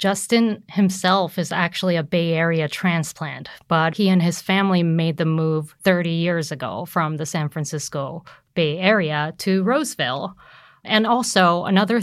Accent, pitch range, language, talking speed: American, 160-195 Hz, English, 150 wpm